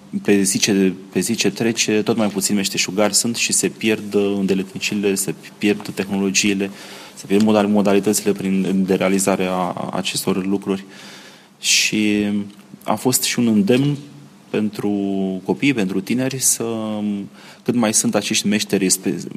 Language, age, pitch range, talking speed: Romanian, 20-39, 95-115 Hz, 135 wpm